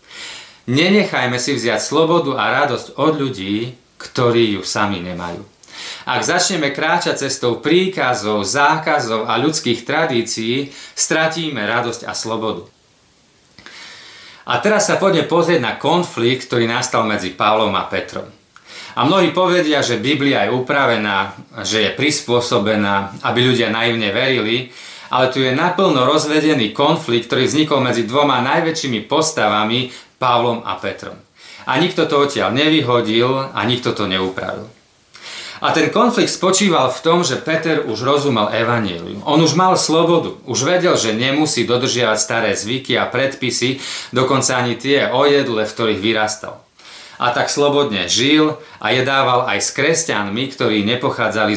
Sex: male